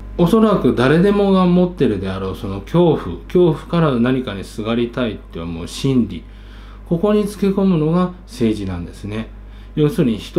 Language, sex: Japanese, male